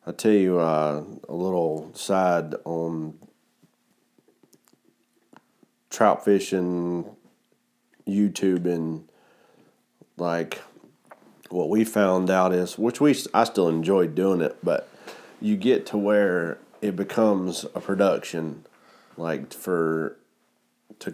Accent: American